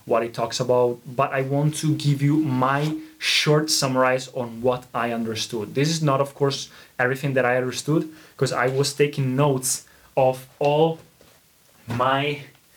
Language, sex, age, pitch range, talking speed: Italian, male, 20-39, 120-145 Hz, 160 wpm